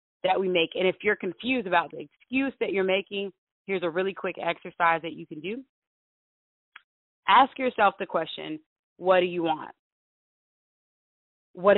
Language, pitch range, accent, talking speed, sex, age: English, 165-200 Hz, American, 160 wpm, female, 20-39